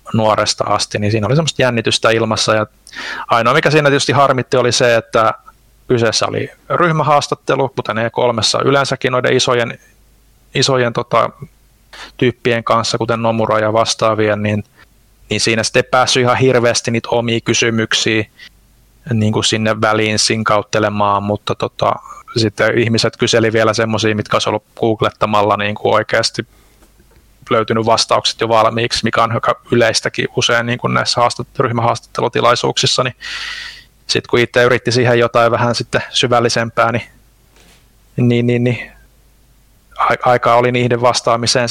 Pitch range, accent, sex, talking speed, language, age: 110-125 Hz, native, male, 135 wpm, Finnish, 30-49